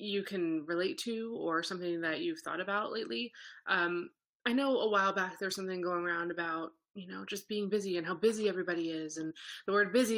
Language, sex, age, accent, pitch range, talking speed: English, female, 20-39, American, 175-220 Hz, 210 wpm